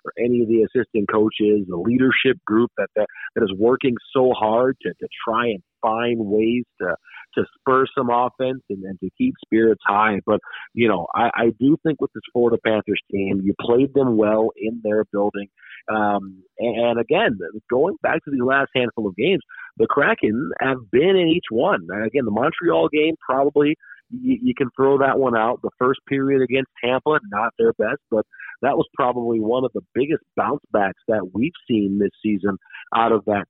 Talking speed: 195 wpm